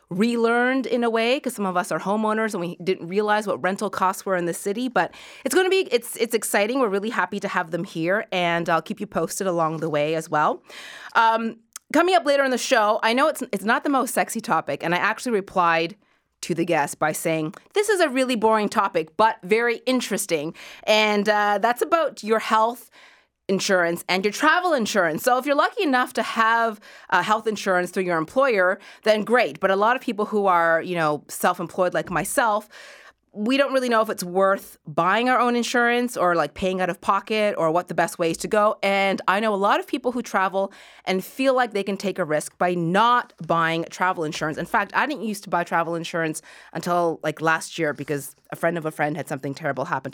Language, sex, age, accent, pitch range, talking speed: English, female, 30-49, American, 175-230 Hz, 225 wpm